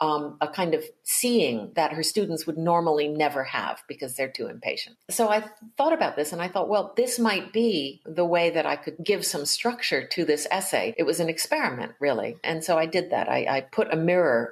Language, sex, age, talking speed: English, female, 50-69, 225 wpm